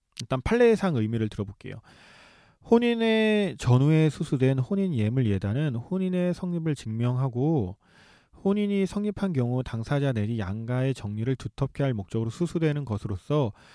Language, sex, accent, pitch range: Korean, male, native, 115-170 Hz